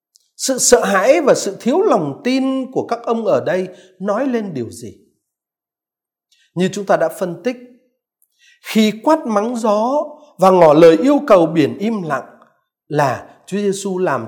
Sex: male